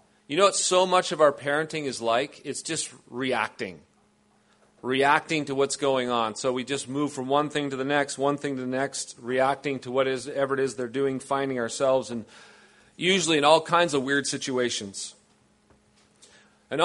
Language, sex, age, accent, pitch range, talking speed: English, male, 40-59, American, 130-155 Hz, 180 wpm